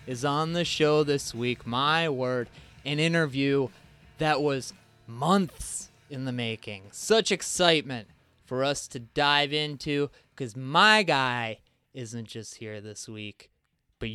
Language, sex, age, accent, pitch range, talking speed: English, male, 20-39, American, 120-145 Hz, 135 wpm